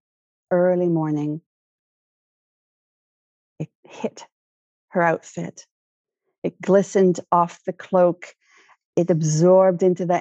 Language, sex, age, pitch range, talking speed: English, female, 50-69, 160-185 Hz, 90 wpm